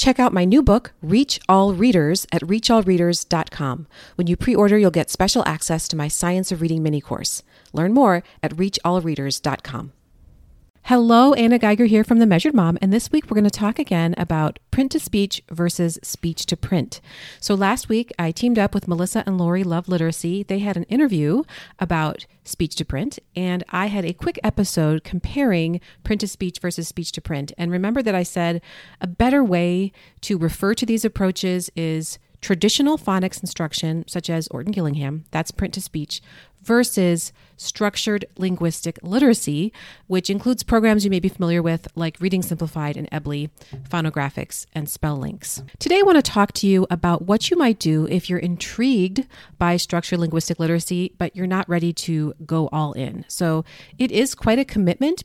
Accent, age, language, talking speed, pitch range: American, 40-59, English, 165 wpm, 165-205 Hz